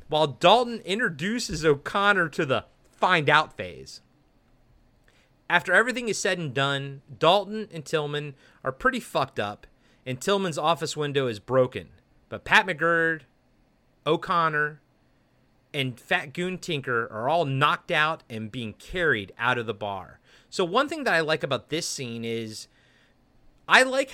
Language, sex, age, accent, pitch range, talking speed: English, male, 30-49, American, 130-180 Hz, 145 wpm